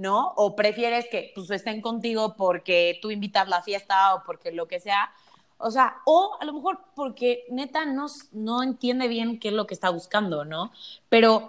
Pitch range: 195-250 Hz